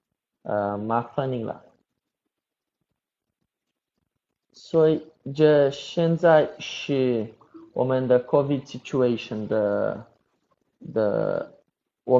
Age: 20-39